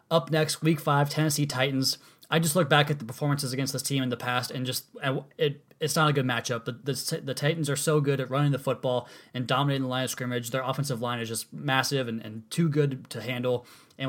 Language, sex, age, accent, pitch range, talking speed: English, male, 20-39, American, 125-150 Hz, 240 wpm